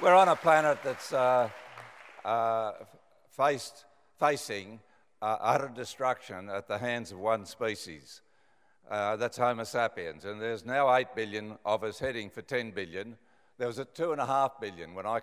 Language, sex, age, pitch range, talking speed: English, male, 60-79, 105-140 Hz, 155 wpm